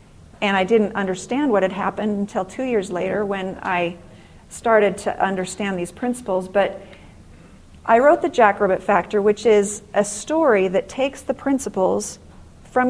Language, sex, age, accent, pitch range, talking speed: English, female, 40-59, American, 190-225 Hz, 155 wpm